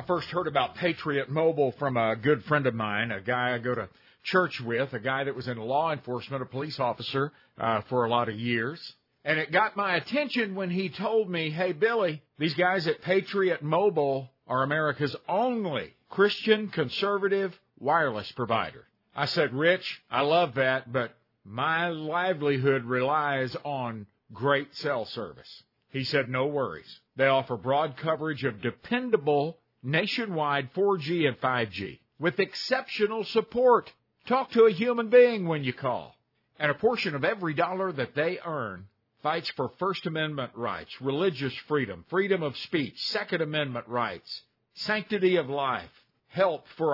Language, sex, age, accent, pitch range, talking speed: English, male, 50-69, American, 130-180 Hz, 160 wpm